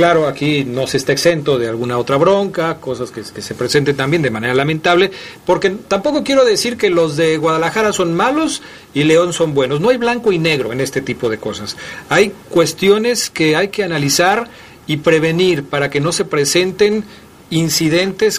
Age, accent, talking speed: 40-59, Mexican, 185 wpm